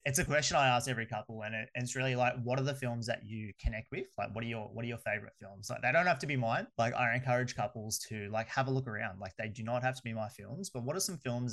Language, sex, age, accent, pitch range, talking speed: English, male, 20-39, Australian, 110-125 Hz, 315 wpm